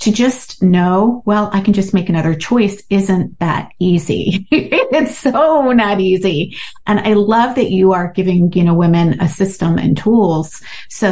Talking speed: 175 wpm